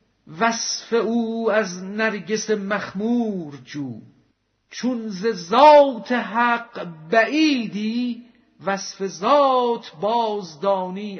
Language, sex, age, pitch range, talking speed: Persian, male, 50-69, 170-225 Hz, 75 wpm